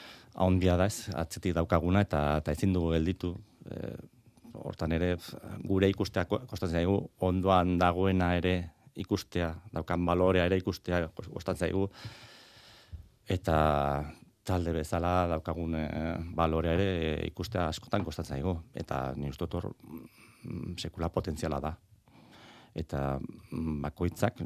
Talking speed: 110 wpm